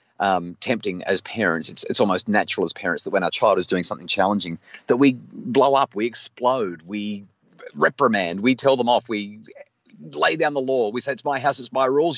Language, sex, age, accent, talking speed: English, male, 30-49, Australian, 210 wpm